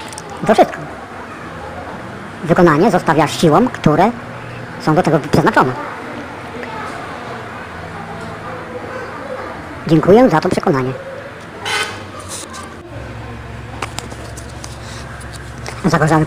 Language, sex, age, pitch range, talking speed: English, male, 50-69, 115-175 Hz, 55 wpm